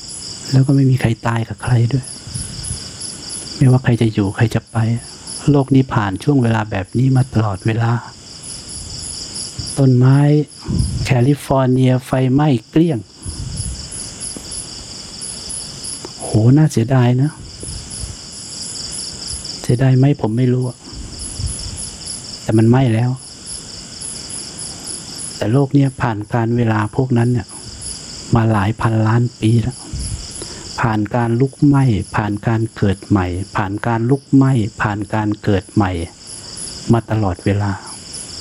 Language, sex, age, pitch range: English, male, 60-79, 105-135 Hz